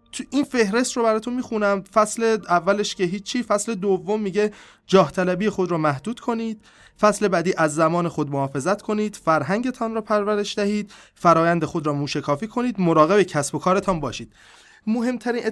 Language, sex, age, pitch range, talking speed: Persian, male, 30-49, 155-205 Hz, 160 wpm